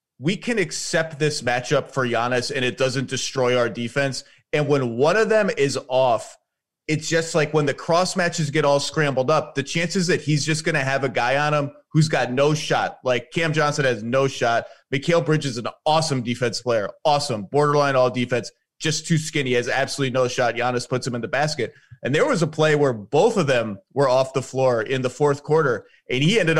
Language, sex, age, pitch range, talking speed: English, male, 30-49, 130-155 Hz, 220 wpm